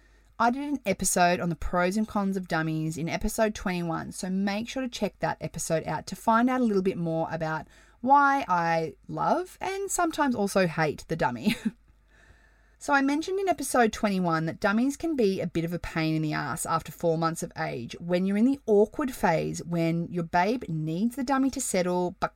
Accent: Australian